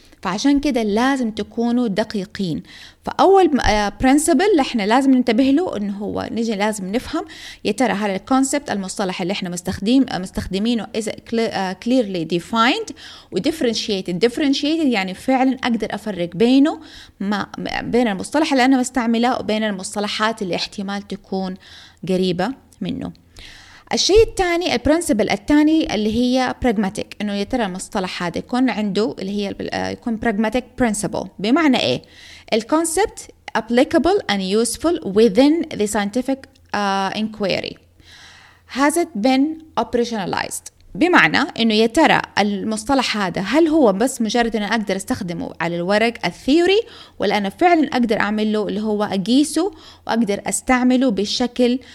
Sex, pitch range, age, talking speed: female, 200-265 Hz, 20-39, 130 wpm